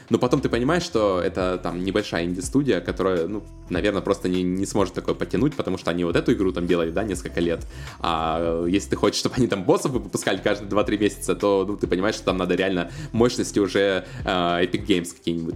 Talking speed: 210 wpm